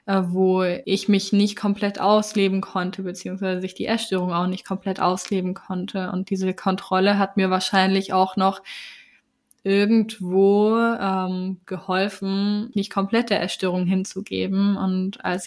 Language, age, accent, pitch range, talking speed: German, 10-29, German, 185-210 Hz, 130 wpm